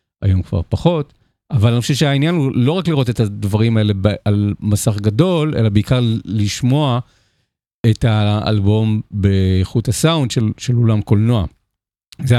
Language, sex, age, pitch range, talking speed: Hebrew, male, 40-59, 105-155 Hz, 140 wpm